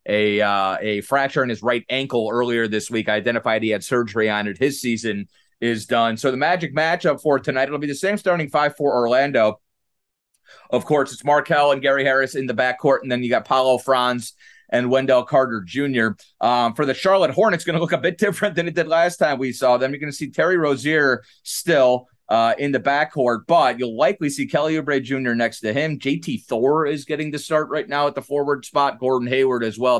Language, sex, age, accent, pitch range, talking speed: English, male, 30-49, American, 125-155 Hz, 225 wpm